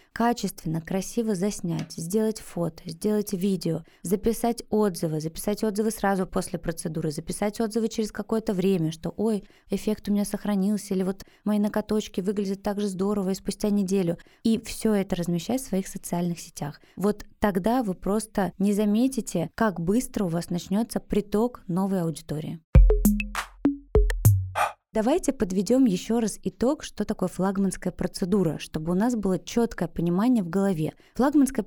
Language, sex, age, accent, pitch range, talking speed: Russian, female, 20-39, native, 185-225 Hz, 145 wpm